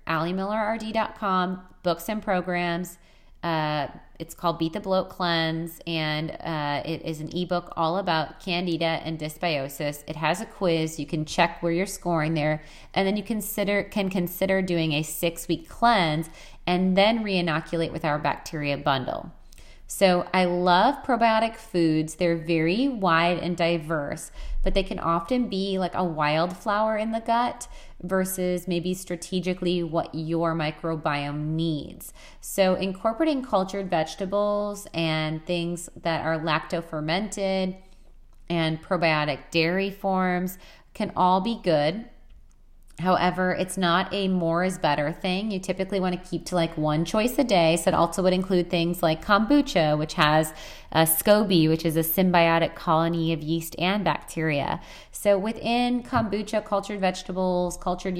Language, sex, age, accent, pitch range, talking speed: English, female, 30-49, American, 160-195 Hz, 145 wpm